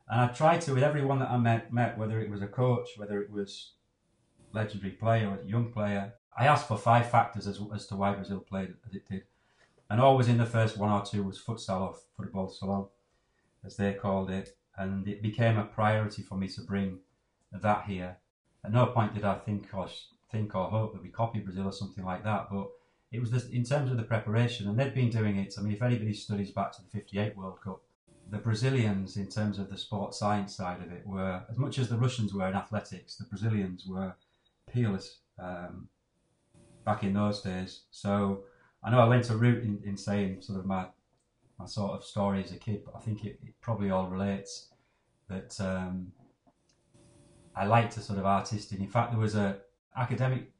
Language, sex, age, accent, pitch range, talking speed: English, male, 30-49, British, 100-115 Hz, 215 wpm